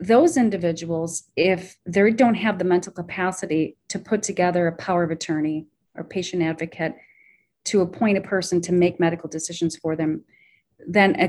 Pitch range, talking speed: 160-200 Hz, 165 wpm